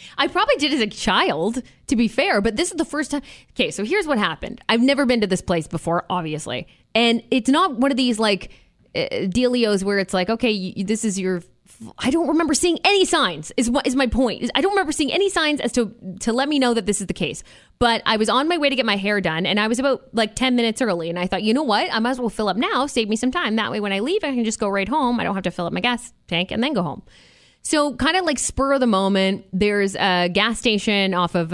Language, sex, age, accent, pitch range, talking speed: English, female, 20-39, American, 195-265 Hz, 280 wpm